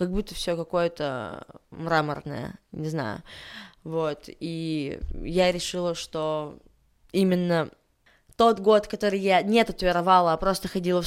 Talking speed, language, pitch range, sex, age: 125 wpm, Russian, 165-200 Hz, female, 20-39